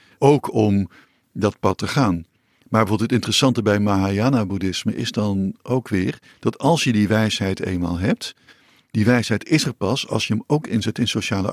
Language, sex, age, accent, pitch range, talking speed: Dutch, male, 50-69, Dutch, 95-120 Hz, 180 wpm